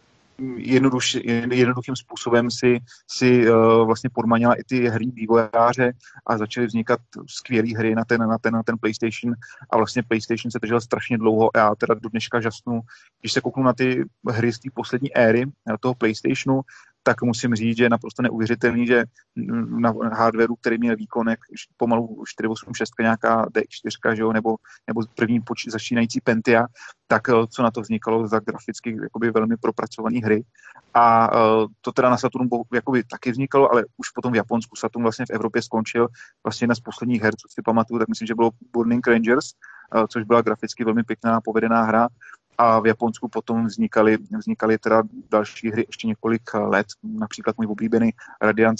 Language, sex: Slovak, male